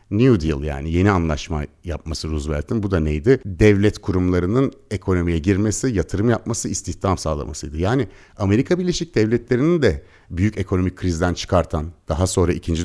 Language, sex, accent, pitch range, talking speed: Turkish, male, native, 85-120 Hz, 140 wpm